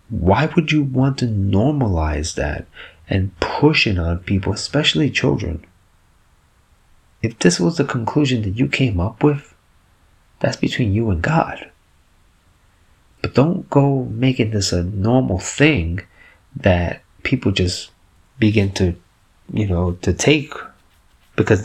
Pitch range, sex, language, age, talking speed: 90-110 Hz, male, English, 30-49, 130 wpm